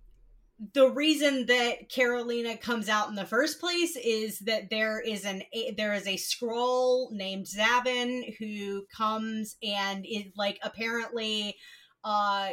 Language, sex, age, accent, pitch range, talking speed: English, female, 30-49, American, 210-265 Hz, 135 wpm